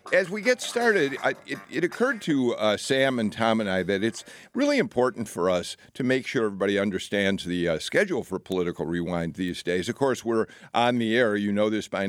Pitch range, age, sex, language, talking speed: 100-130 Hz, 50-69, male, English, 215 wpm